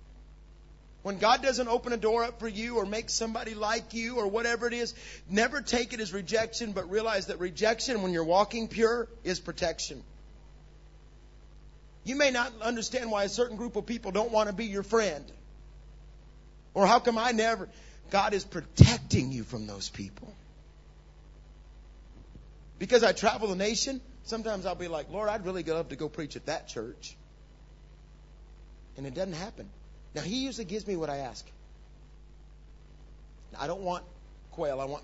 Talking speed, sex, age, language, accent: 170 wpm, male, 50-69, English, American